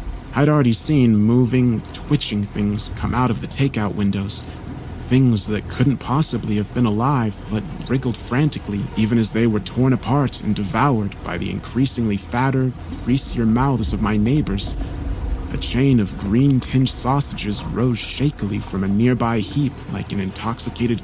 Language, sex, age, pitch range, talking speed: English, male, 30-49, 100-125 Hz, 155 wpm